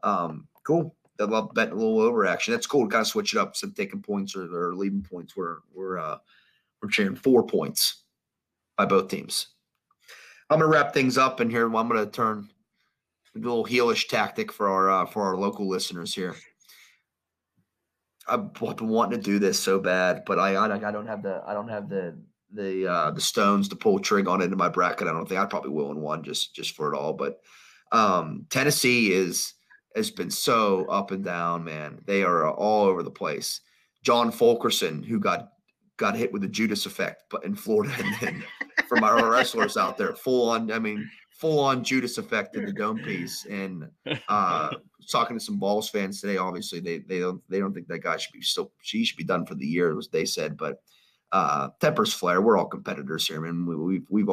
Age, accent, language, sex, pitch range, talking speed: 30-49, American, English, male, 95-130 Hz, 210 wpm